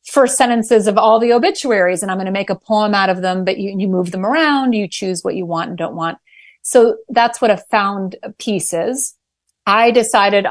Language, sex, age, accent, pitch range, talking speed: English, female, 30-49, American, 180-235 Hz, 225 wpm